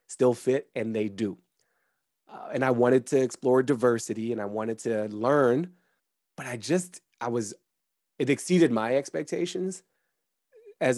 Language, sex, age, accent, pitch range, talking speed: English, male, 30-49, American, 110-140 Hz, 150 wpm